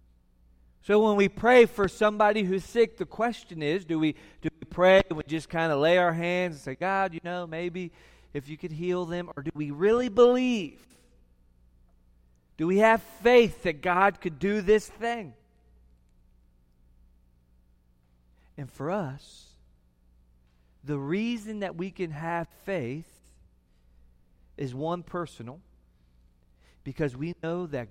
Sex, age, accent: male, 40-59, American